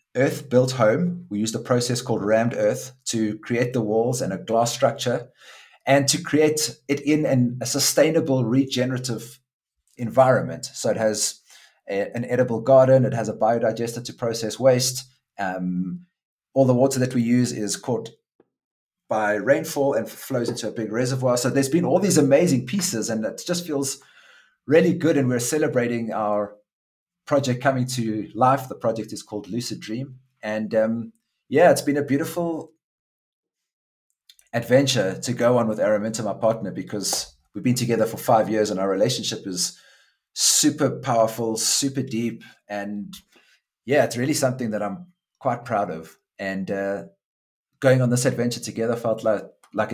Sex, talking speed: male, 160 wpm